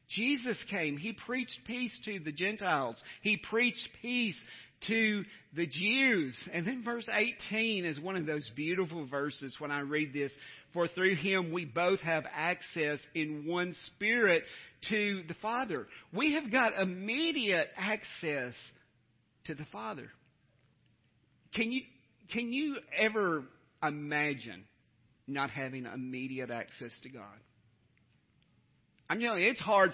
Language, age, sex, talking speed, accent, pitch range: English, 50-69, male, 125 wpm, American, 150-225 Hz